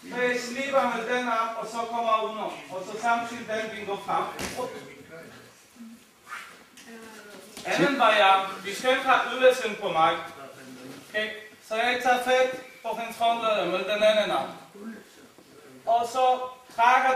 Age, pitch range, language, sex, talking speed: 40-59, 210-255 Hz, Danish, male, 135 wpm